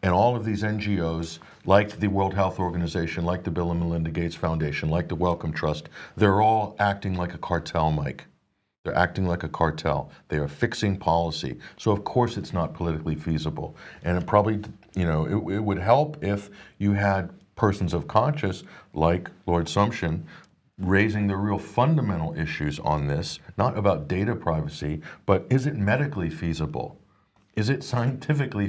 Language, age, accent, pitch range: English, 50-69, American, 85-110 Hz